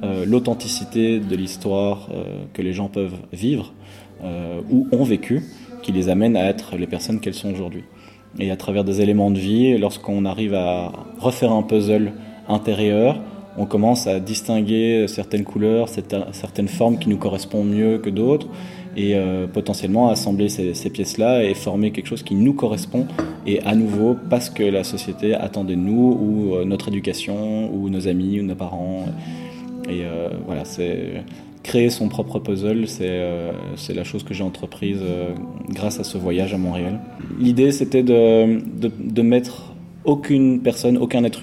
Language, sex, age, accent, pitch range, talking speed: English, male, 20-39, French, 95-115 Hz, 165 wpm